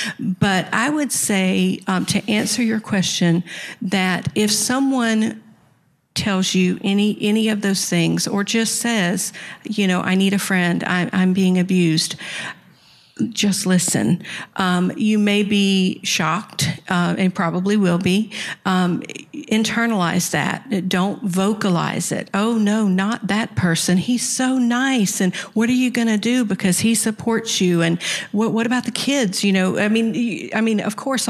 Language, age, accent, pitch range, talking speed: English, 50-69, American, 185-215 Hz, 155 wpm